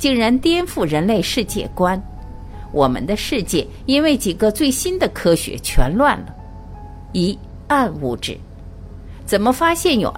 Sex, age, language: female, 50-69, Chinese